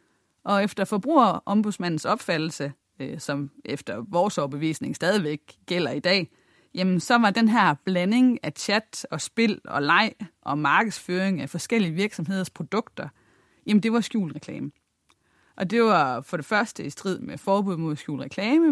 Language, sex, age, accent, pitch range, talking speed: Danish, female, 30-49, native, 155-215 Hz, 155 wpm